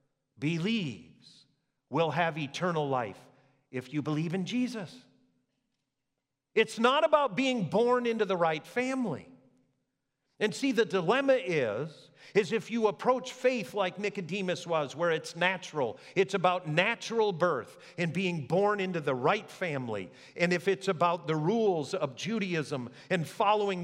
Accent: American